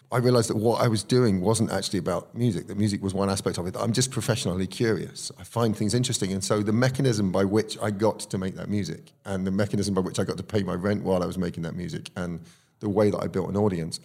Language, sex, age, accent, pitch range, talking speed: English, male, 30-49, British, 95-120 Hz, 270 wpm